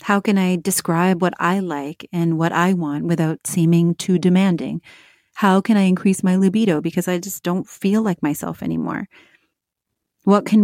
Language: English